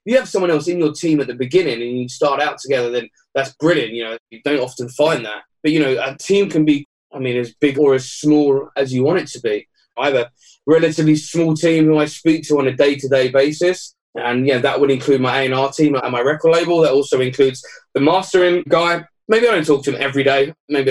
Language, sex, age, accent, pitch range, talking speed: English, male, 20-39, British, 135-165 Hz, 250 wpm